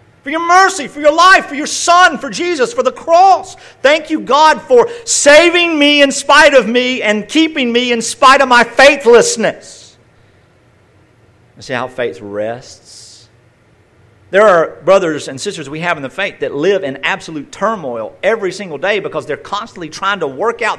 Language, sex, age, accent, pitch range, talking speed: English, male, 50-69, American, 160-255 Hz, 175 wpm